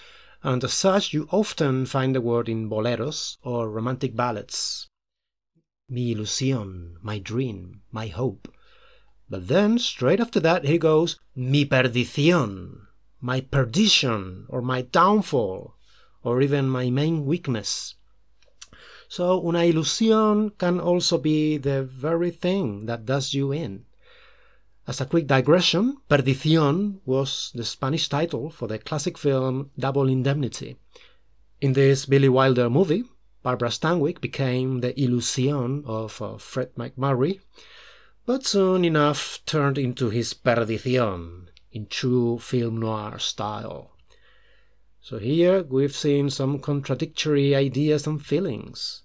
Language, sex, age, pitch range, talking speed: English, male, 30-49, 120-160 Hz, 125 wpm